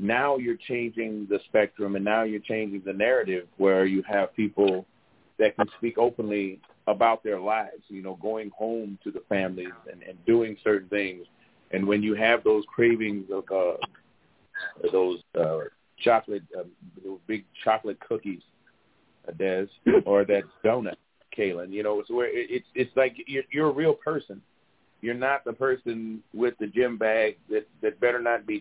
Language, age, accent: English, 40-59, American